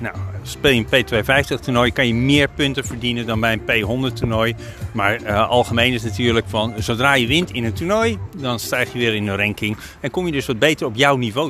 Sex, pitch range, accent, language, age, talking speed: male, 110-145 Hz, Dutch, Dutch, 40-59, 225 wpm